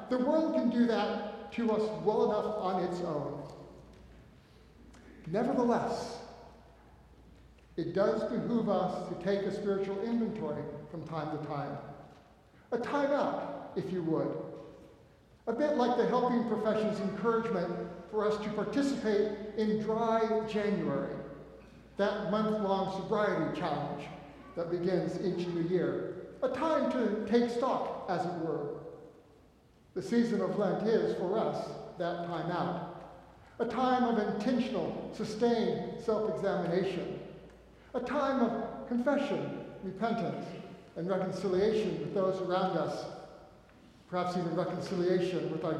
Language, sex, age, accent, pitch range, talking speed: English, male, 60-79, American, 180-230 Hz, 125 wpm